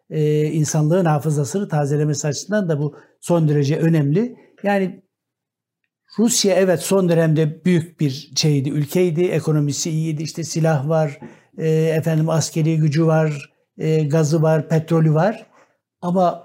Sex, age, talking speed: male, 60-79, 115 wpm